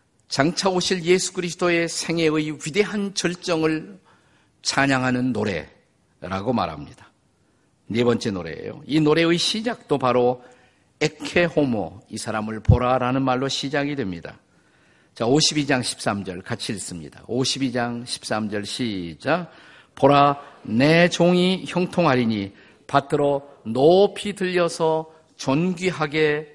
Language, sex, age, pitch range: Korean, male, 50-69, 130-170 Hz